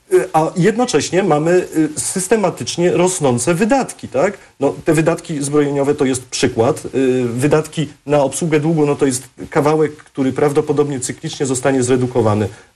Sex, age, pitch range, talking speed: male, 40-59, 135-180 Hz, 125 wpm